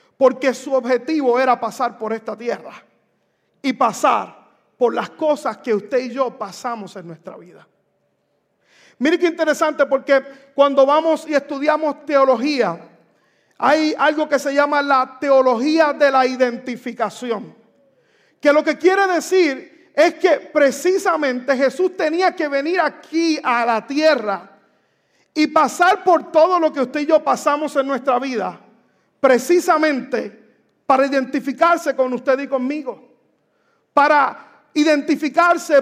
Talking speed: 130 wpm